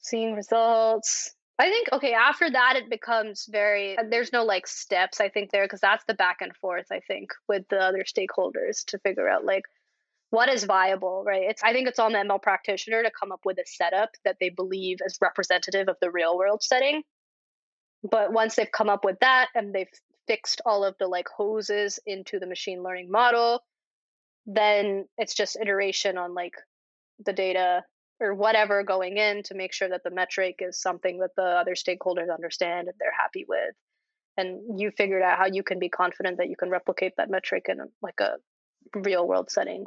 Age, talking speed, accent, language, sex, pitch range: 20-39, 200 wpm, American, English, female, 185-225 Hz